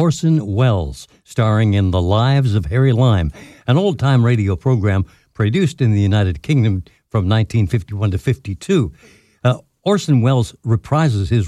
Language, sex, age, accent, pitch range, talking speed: English, male, 60-79, American, 105-135 Hz, 140 wpm